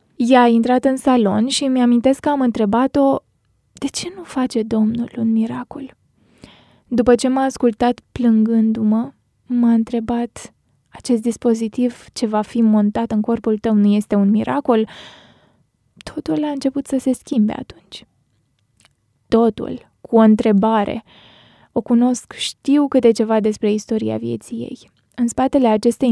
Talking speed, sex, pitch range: 140 wpm, female, 225-265 Hz